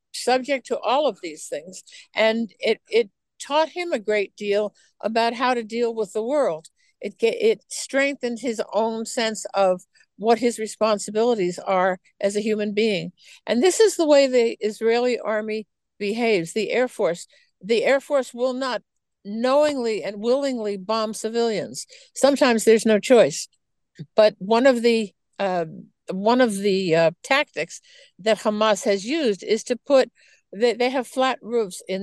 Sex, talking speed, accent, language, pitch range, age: female, 160 wpm, American, English, 200-250 Hz, 60-79